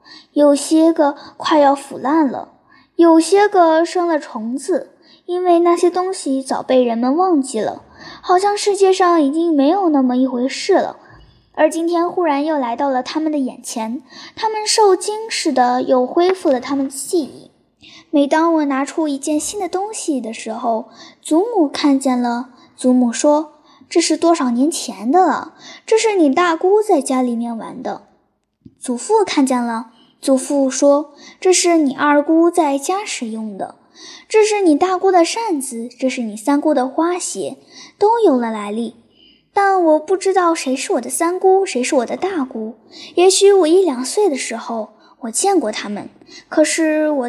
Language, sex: Chinese, male